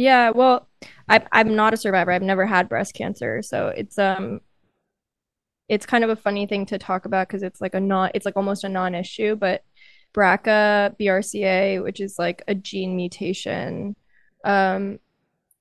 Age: 20-39